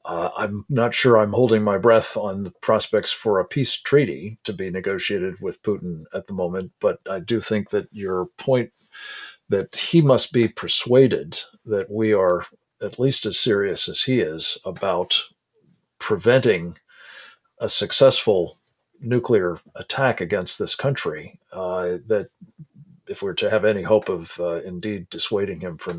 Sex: male